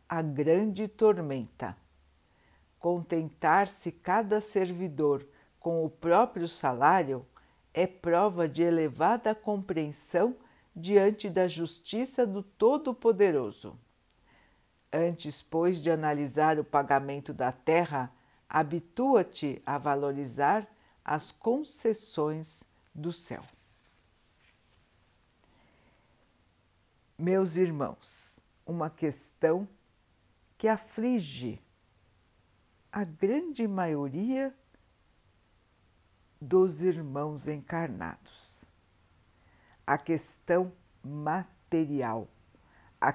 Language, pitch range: Portuguese, 140-185 Hz